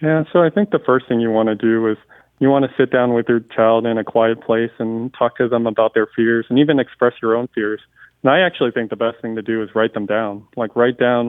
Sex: male